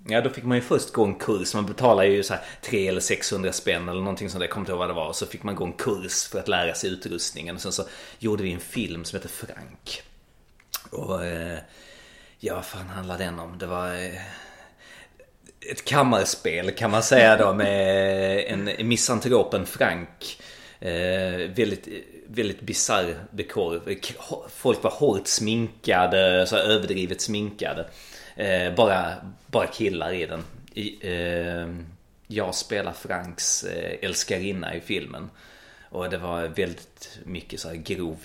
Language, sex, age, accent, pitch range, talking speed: Swedish, male, 30-49, native, 90-110 Hz, 155 wpm